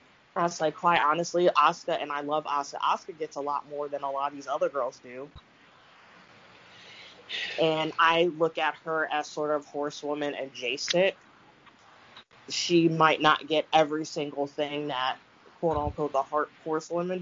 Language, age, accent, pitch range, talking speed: English, 20-39, American, 145-165 Hz, 145 wpm